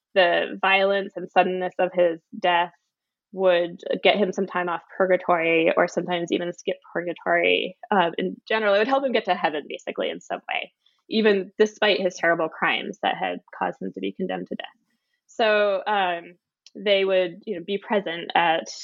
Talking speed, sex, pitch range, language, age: 180 wpm, female, 175-210 Hz, English, 10-29